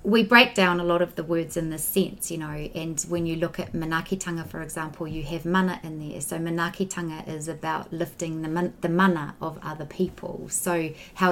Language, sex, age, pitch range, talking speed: English, female, 30-49, 160-185 Hz, 200 wpm